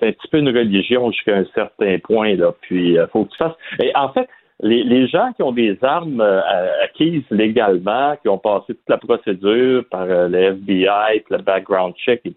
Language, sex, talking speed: French, male, 220 wpm